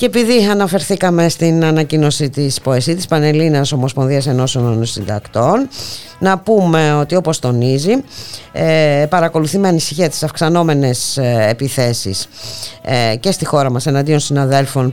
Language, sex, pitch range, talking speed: Greek, female, 115-160 Hz, 115 wpm